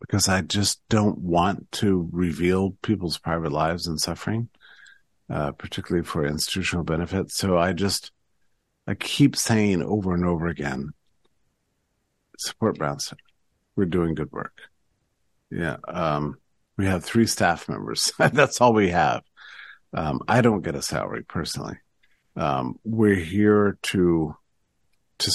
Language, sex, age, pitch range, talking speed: English, male, 50-69, 80-100 Hz, 135 wpm